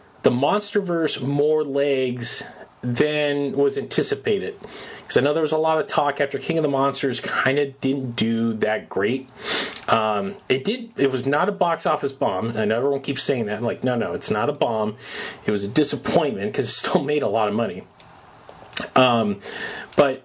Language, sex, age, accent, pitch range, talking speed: English, male, 30-49, American, 125-165 Hz, 195 wpm